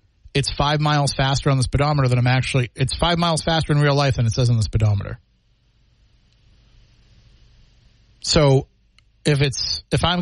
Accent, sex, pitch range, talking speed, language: American, male, 110-150 Hz, 175 wpm, English